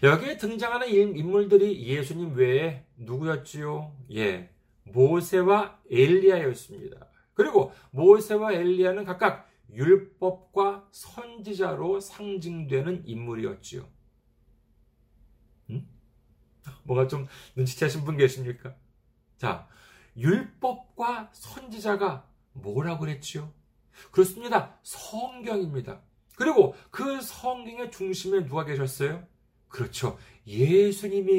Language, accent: Korean, native